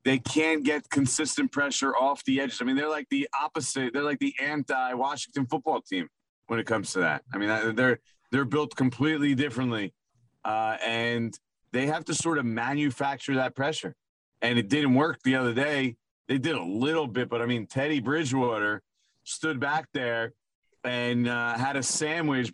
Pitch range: 130-160 Hz